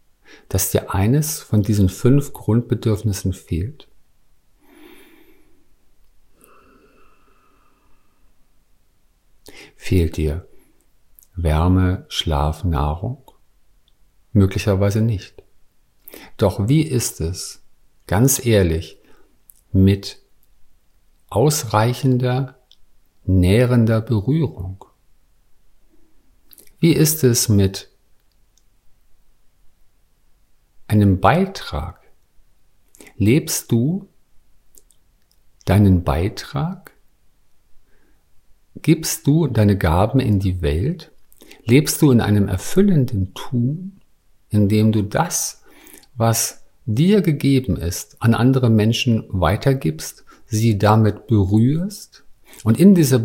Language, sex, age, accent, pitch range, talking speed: German, male, 50-69, German, 95-140 Hz, 75 wpm